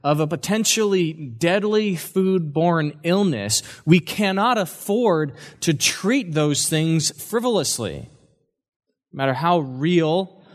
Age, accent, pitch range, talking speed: 20-39, American, 130-175 Hz, 100 wpm